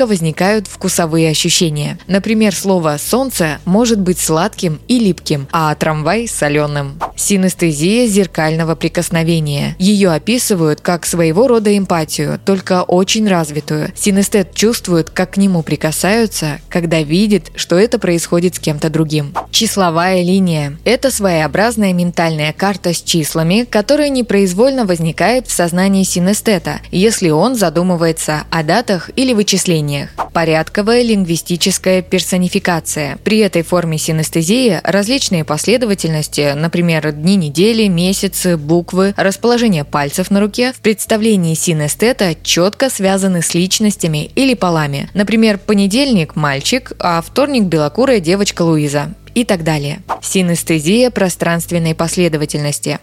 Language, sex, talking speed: Russian, female, 115 wpm